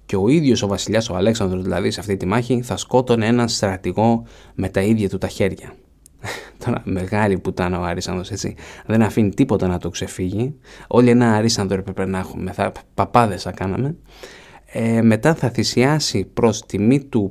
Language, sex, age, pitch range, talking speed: Greek, male, 20-39, 95-120 Hz, 175 wpm